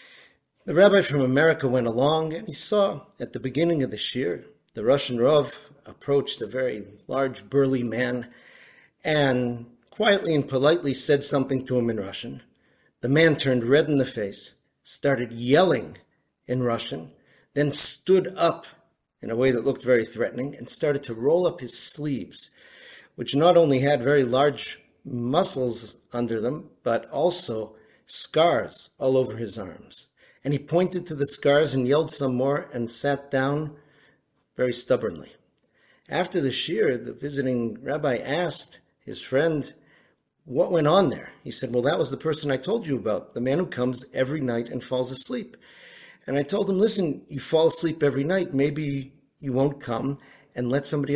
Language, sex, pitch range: English, male, 125-155 Hz